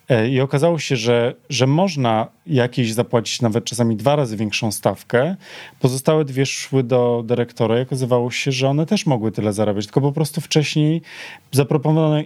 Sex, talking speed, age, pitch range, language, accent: male, 160 wpm, 30-49, 115-150 Hz, Polish, native